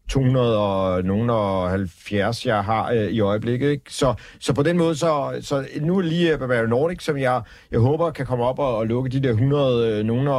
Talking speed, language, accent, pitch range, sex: 225 wpm, Danish, native, 110-135 Hz, male